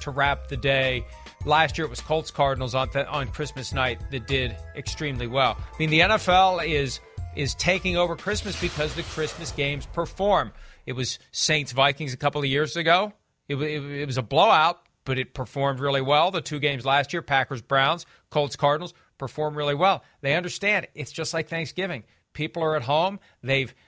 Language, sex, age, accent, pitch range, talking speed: English, male, 40-59, American, 135-175 Hz, 195 wpm